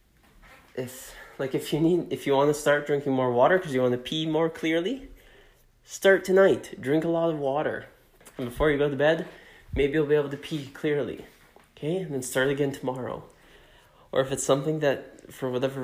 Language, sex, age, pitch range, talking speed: English, male, 20-39, 120-145 Hz, 200 wpm